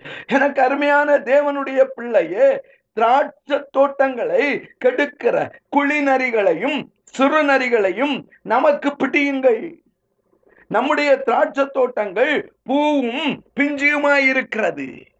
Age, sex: 50-69, male